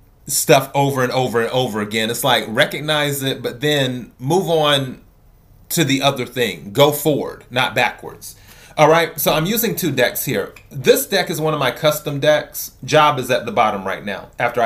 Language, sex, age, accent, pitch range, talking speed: English, male, 30-49, American, 120-160 Hz, 190 wpm